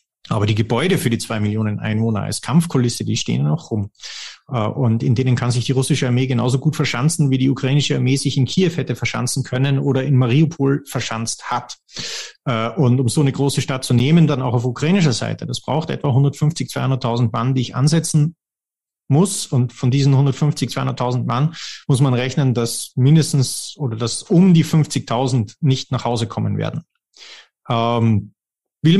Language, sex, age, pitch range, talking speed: German, male, 30-49, 120-150 Hz, 175 wpm